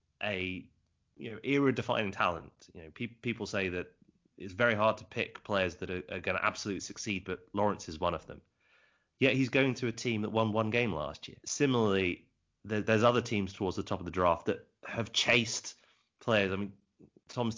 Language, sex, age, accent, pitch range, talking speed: English, male, 30-49, British, 95-110 Hz, 200 wpm